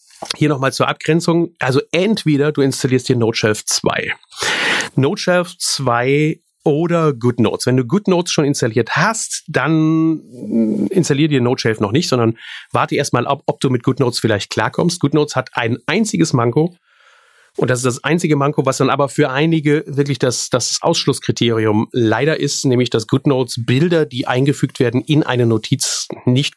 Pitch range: 115-145 Hz